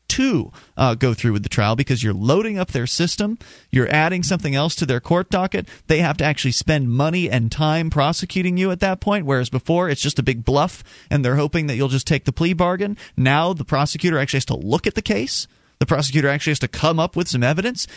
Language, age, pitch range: English, 30-49, 145-190 Hz